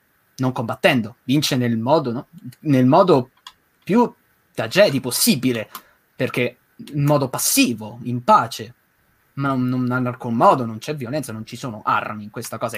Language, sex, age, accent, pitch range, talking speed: Italian, male, 20-39, native, 120-150 Hz, 160 wpm